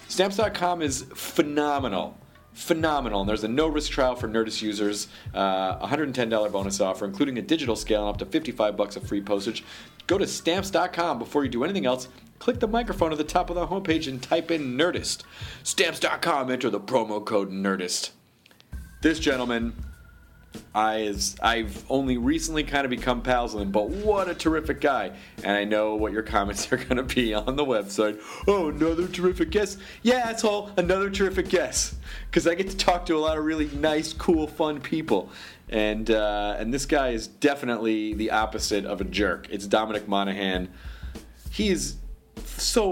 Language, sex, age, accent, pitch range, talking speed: English, male, 30-49, American, 105-160 Hz, 170 wpm